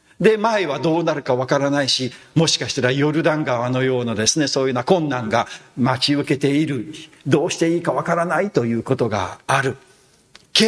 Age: 50-69